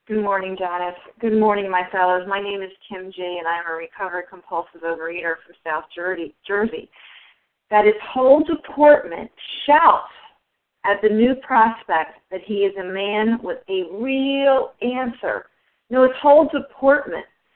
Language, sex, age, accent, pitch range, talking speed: English, female, 40-59, American, 200-265 Hz, 155 wpm